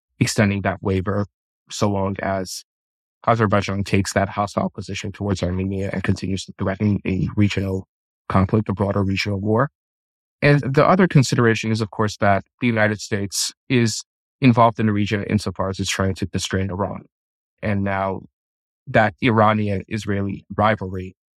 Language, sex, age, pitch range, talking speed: English, male, 20-39, 95-110 Hz, 145 wpm